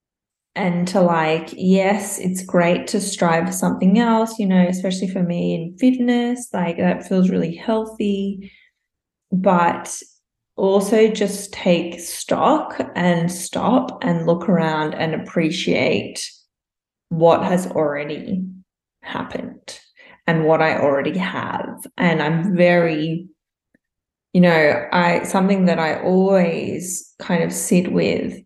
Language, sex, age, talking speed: English, female, 20-39, 120 wpm